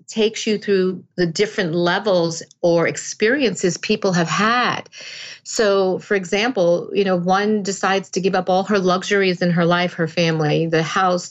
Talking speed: 165 wpm